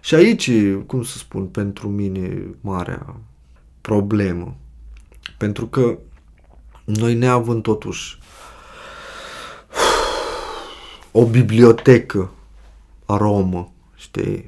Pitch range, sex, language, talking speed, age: 100-150 Hz, male, Romanian, 85 wpm, 20-39